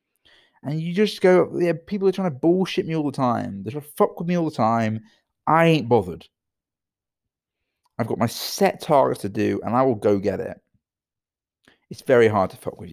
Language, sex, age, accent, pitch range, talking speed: English, male, 30-49, British, 100-150 Hz, 215 wpm